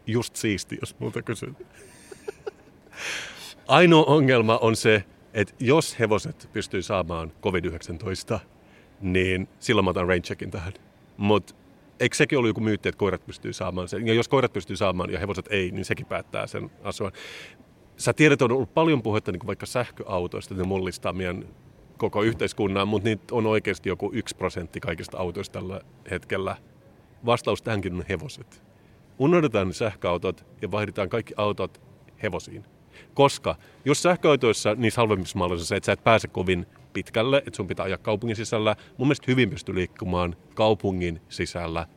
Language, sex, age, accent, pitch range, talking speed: Finnish, male, 40-59, native, 95-120 Hz, 155 wpm